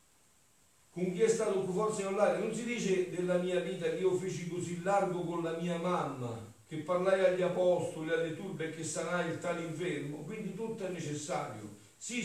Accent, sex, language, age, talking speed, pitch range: native, male, Italian, 50-69, 185 wpm, 120-175 Hz